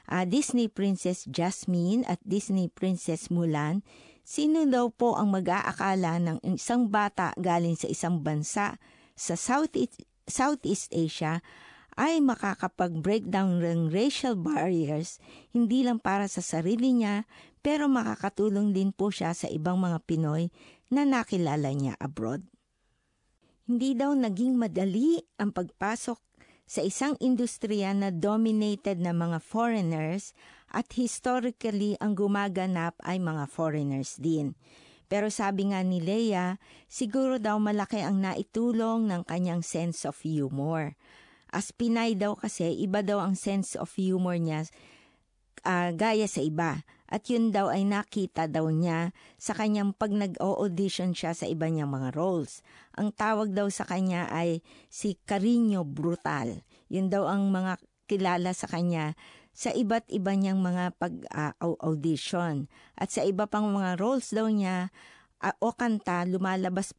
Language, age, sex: Japanese, 50-69, female